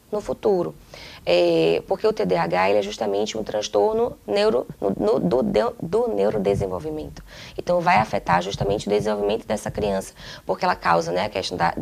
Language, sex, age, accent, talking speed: Portuguese, female, 20-39, Brazilian, 170 wpm